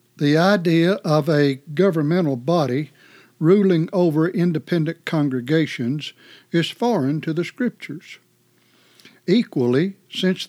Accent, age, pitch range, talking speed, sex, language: American, 60-79, 140-175 Hz, 95 wpm, male, English